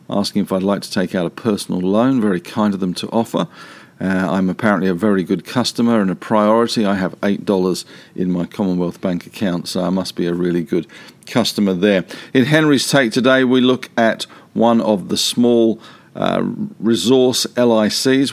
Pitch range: 95-115 Hz